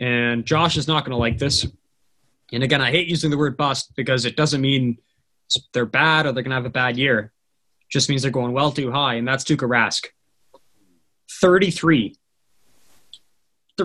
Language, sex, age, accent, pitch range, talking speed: English, male, 20-39, American, 130-160 Hz, 190 wpm